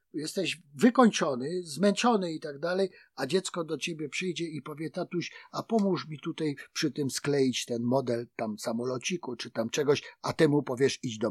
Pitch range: 130-200 Hz